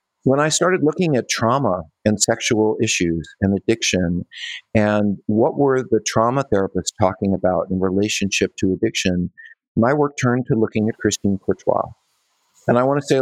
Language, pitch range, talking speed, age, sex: English, 100-125 Hz, 165 wpm, 50-69, male